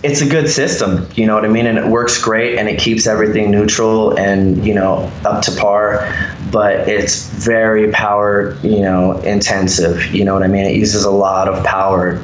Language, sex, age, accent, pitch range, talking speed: English, male, 20-39, American, 95-110 Hz, 205 wpm